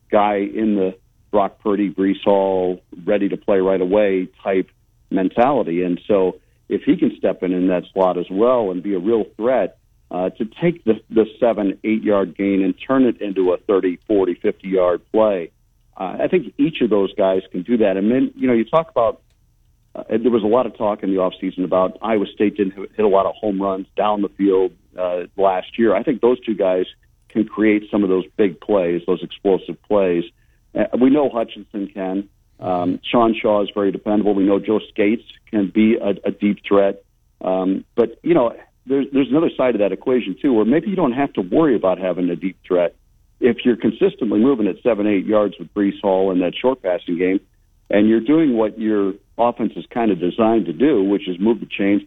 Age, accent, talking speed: 50-69, American, 205 wpm